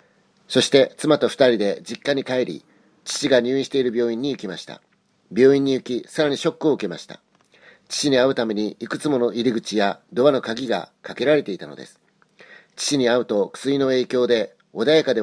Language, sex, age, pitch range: Japanese, male, 40-59, 115-140 Hz